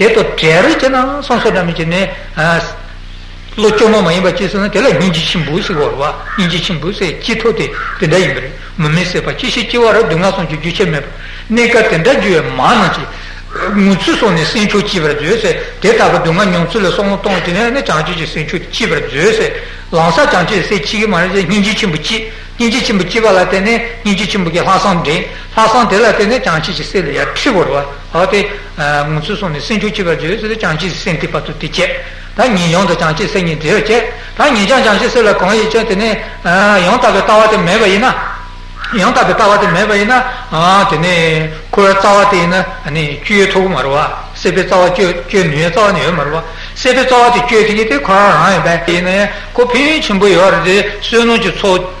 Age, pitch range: 60-79, 170-220 Hz